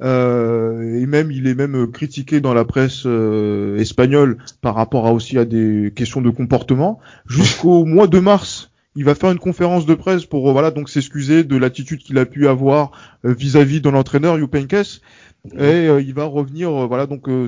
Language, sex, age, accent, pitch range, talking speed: French, male, 20-39, French, 115-140 Hz, 195 wpm